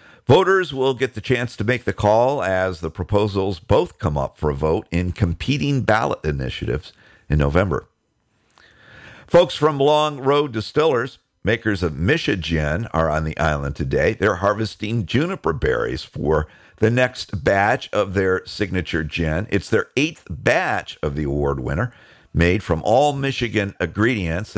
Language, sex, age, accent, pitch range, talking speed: English, male, 50-69, American, 85-125 Hz, 150 wpm